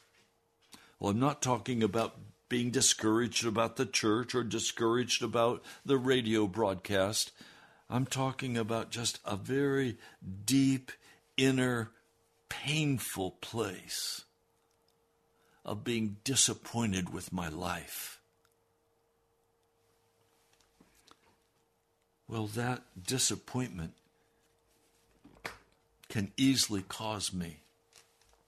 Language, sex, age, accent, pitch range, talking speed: English, male, 60-79, American, 95-125 Hz, 80 wpm